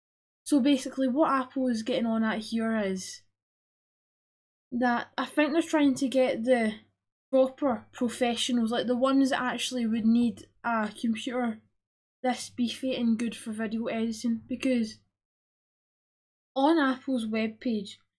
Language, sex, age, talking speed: English, female, 10-29, 130 wpm